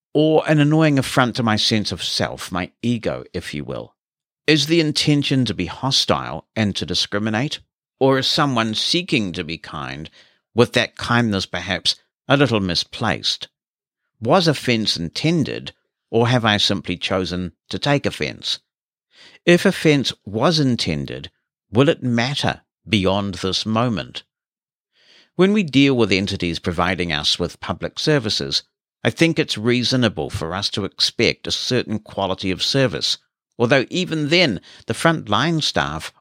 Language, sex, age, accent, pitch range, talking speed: English, male, 60-79, British, 95-140 Hz, 145 wpm